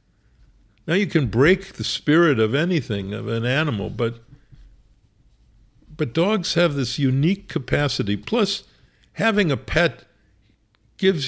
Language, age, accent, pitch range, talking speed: English, 60-79, American, 105-145 Hz, 120 wpm